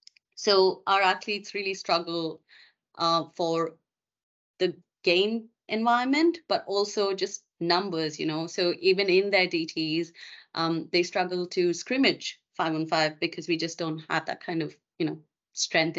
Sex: female